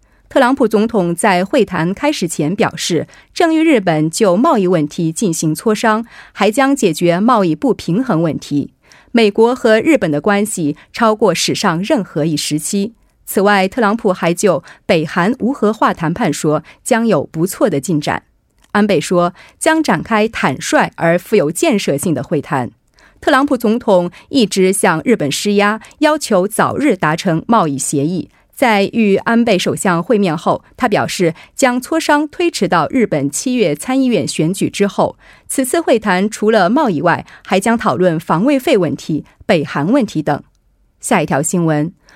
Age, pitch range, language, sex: 30-49, 175-255 Hz, Korean, female